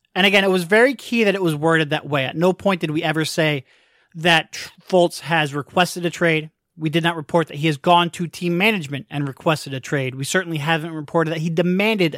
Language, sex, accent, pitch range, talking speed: English, male, American, 150-200 Hz, 230 wpm